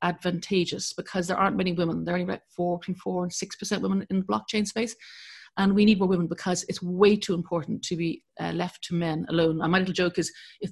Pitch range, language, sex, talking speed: 180-220 Hz, English, female, 245 wpm